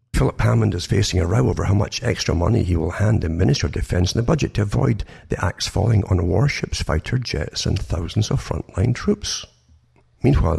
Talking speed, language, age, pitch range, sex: 205 wpm, English, 60-79, 90-115 Hz, male